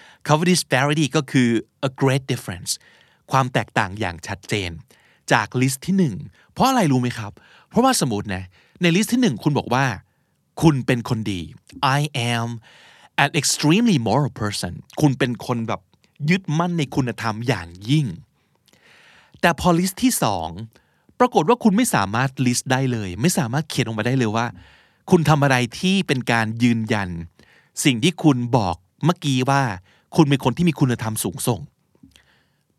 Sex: male